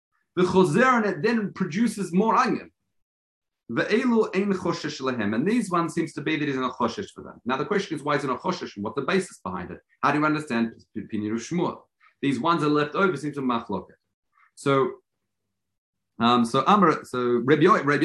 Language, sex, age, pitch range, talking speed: English, male, 40-59, 125-195 Hz, 185 wpm